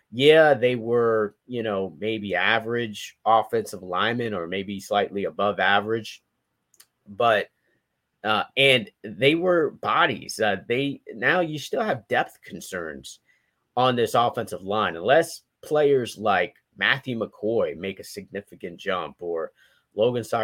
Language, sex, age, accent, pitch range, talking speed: English, male, 30-49, American, 105-130 Hz, 130 wpm